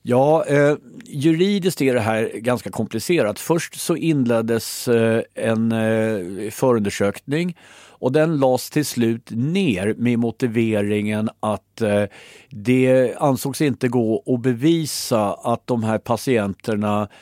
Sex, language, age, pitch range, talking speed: male, Swedish, 50-69, 110-140 Hz, 110 wpm